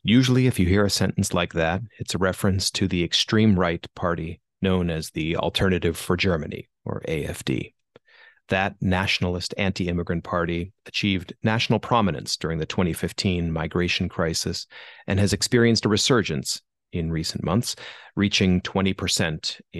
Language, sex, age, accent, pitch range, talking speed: English, male, 30-49, American, 90-105 Hz, 140 wpm